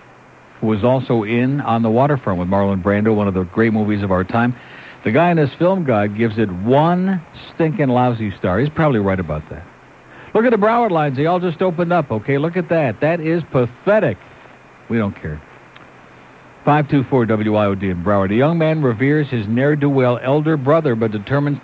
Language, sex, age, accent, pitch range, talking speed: English, male, 60-79, American, 105-140 Hz, 190 wpm